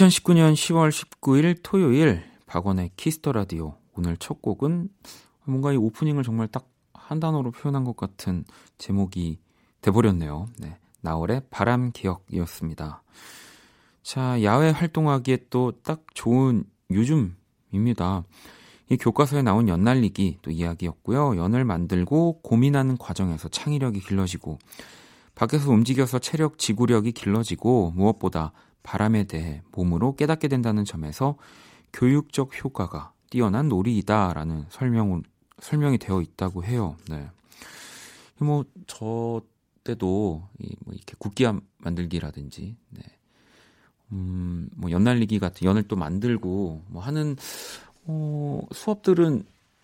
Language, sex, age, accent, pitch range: Korean, male, 30-49, native, 90-135 Hz